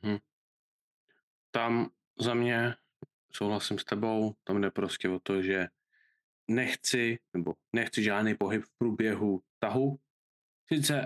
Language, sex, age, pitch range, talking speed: Czech, male, 20-39, 110-130 Hz, 120 wpm